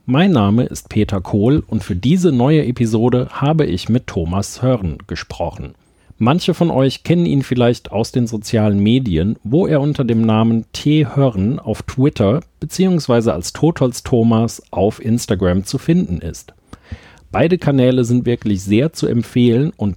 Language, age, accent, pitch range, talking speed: German, 40-59, German, 100-140 Hz, 155 wpm